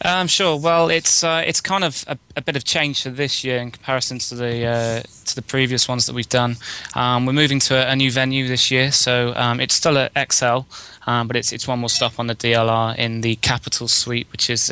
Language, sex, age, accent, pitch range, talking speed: English, male, 20-39, British, 120-130 Hz, 260 wpm